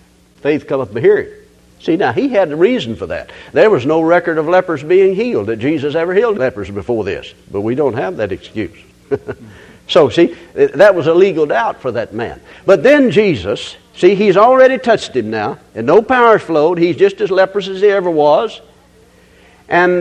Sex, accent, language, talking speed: male, American, English, 195 wpm